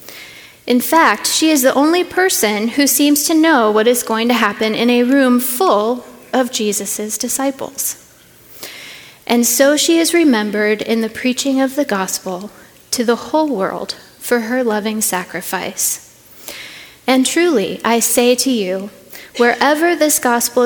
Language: English